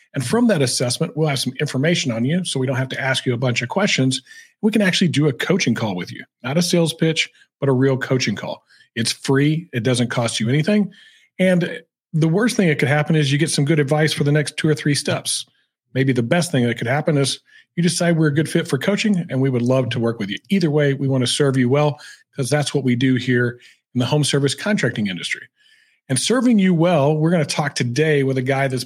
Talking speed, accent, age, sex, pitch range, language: 255 wpm, American, 40-59, male, 130-160 Hz, English